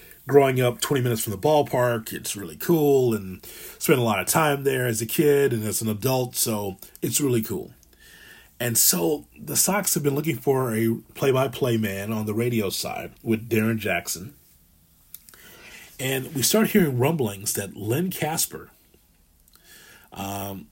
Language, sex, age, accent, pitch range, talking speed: English, male, 30-49, American, 100-125 Hz, 160 wpm